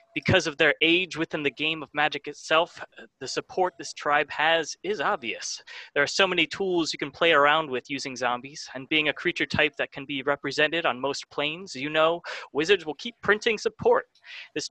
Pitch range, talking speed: 145-185 Hz, 200 wpm